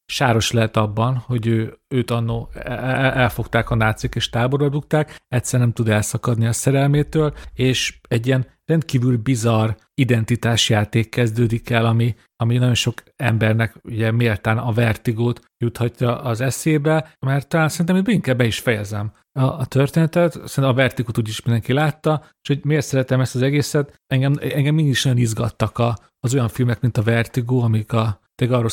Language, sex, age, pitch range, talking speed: Hungarian, male, 40-59, 115-140 Hz, 165 wpm